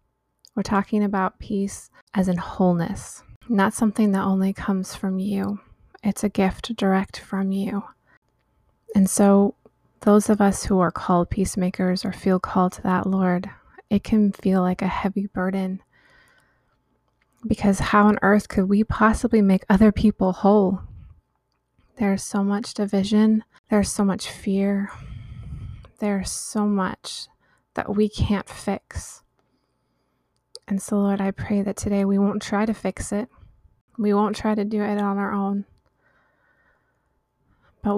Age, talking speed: 20-39, 145 wpm